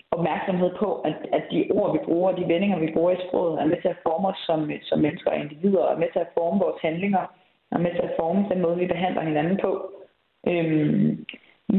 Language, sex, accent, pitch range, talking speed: Danish, female, native, 165-190 Hz, 225 wpm